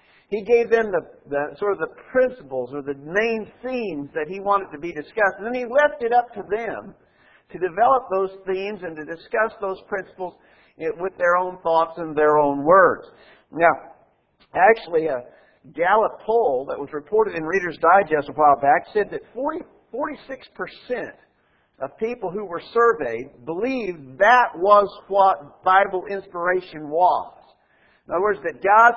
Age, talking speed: 50-69, 160 wpm